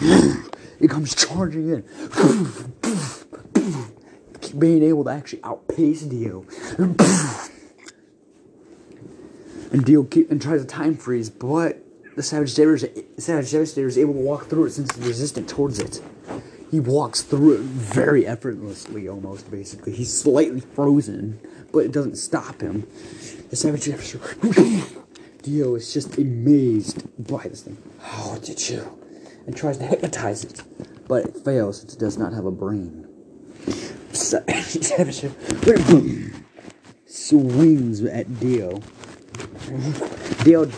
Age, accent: 30-49, American